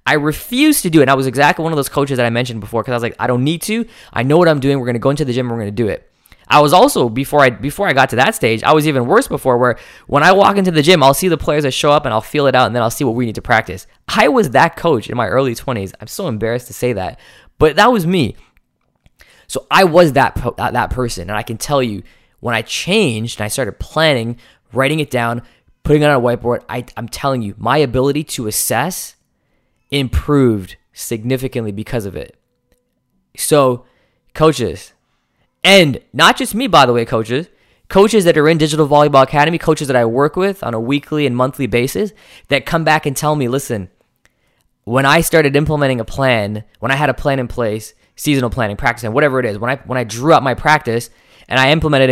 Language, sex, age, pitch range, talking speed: English, male, 10-29, 120-150 Hz, 240 wpm